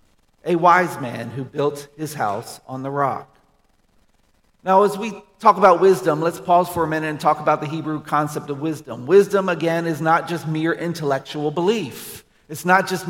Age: 40-59